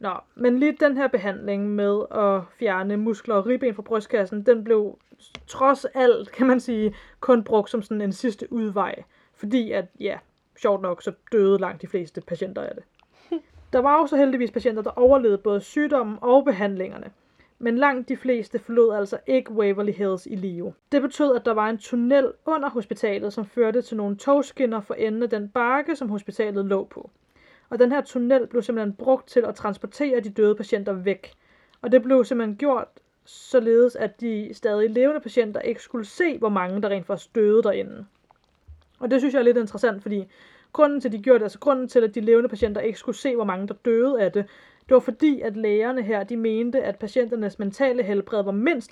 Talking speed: 200 wpm